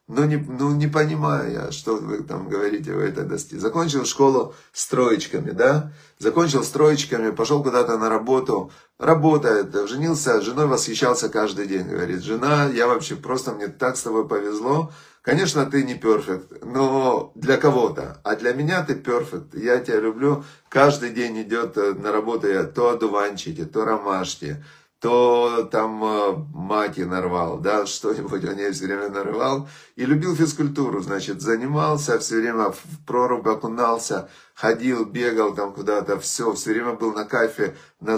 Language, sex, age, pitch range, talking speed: Russian, male, 30-49, 110-145 Hz, 155 wpm